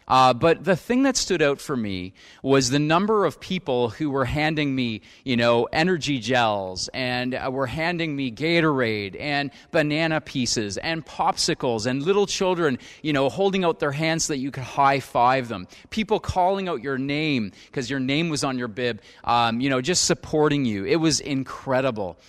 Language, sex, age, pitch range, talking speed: English, male, 30-49, 130-170 Hz, 190 wpm